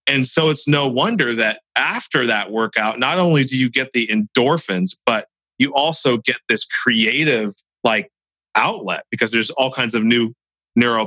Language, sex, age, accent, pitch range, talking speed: English, male, 40-59, American, 100-125 Hz, 170 wpm